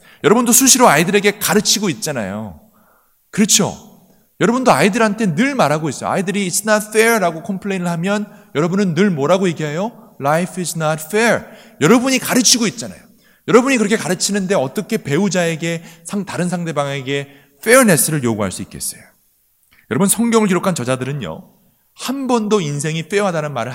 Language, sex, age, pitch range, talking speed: English, male, 30-49, 165-215 Hz, 120 wpm